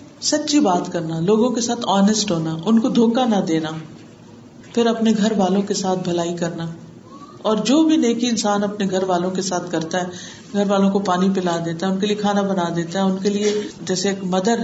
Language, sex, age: Urdu, female, 50-69